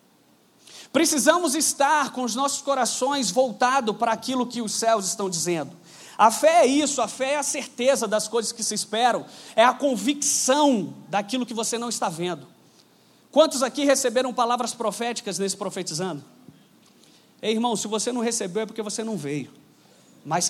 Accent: Brazilian